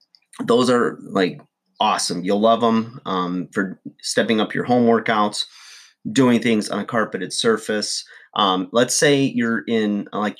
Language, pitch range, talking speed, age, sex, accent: English, 95-110 Hz, 150 wpm, 30-49, male, American